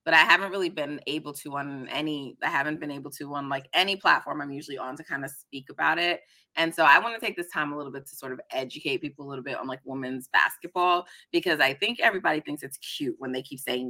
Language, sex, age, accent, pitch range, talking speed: English, female, 30-49, American, 145-195 Hz, 260 wpm